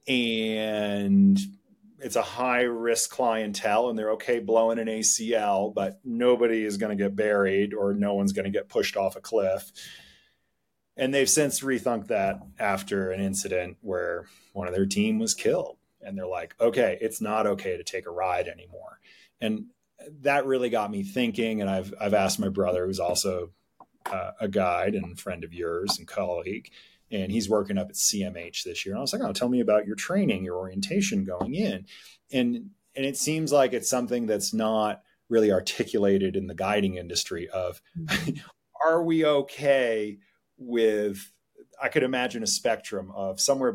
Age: 30-49